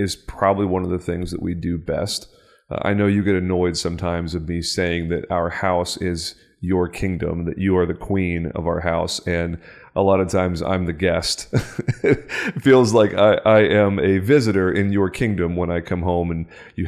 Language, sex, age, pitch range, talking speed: English, male, 30-49, 85-95 Hz, 210 wpm